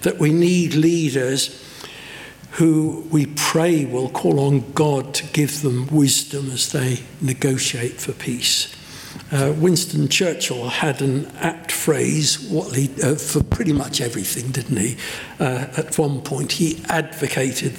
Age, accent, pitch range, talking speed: 60-79, British, 135-180 Hz, 140 wpm